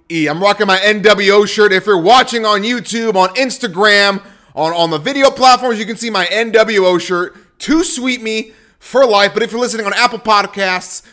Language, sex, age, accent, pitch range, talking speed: English, male, 30-49, American, 190-245 Hz, 190 wpm